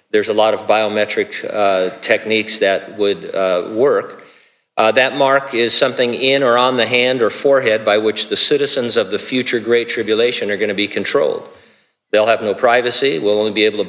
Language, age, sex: English, 50-69, male